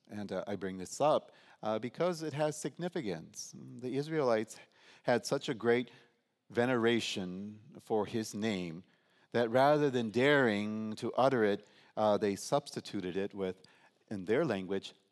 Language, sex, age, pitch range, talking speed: English, male, 40-59, 95-120 Hz, 145 wpm